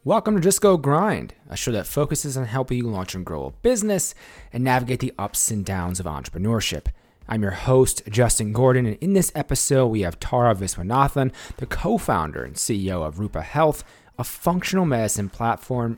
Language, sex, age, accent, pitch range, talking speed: English, male, 30-49, American, 100-130 Hz, 185 wpm